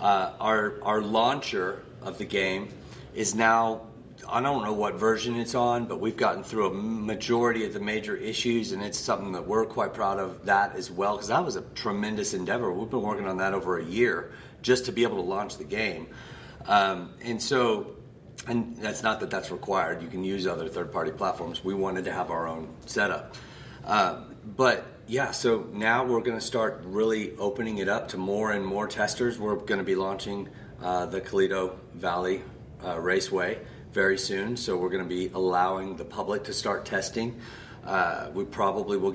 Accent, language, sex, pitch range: American, English, male, 95-115 Hz